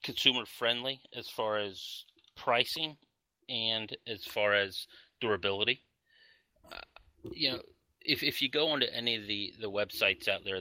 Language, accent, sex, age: English, American, male, 30-49